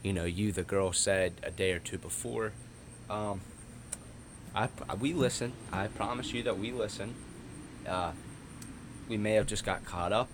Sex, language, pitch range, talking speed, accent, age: male, English, 90-105 Hz, 170 wpm, American, 20-39